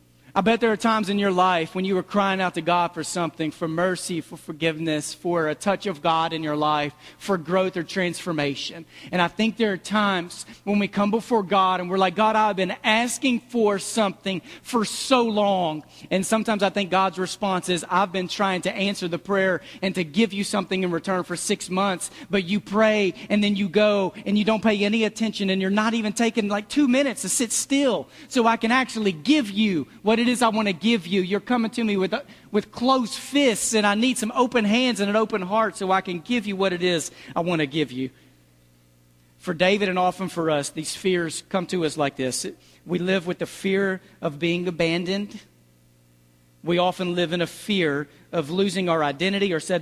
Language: English